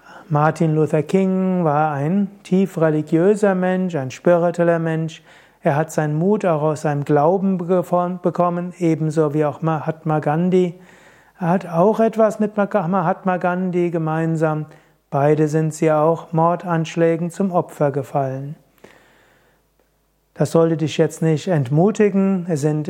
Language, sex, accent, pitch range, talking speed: German, male, German, 155-185 Hz, 130 wpm